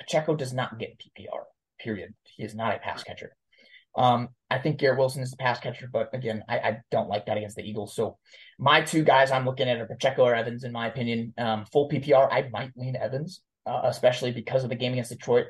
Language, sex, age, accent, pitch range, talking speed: English, male, 20-39, American, 120-145 Hz, 230 wpm